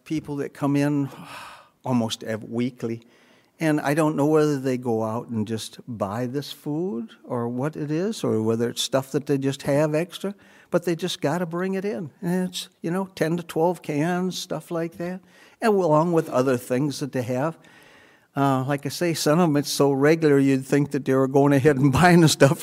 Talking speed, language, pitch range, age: 210 wpm, English, 135-165 Hz, 60-79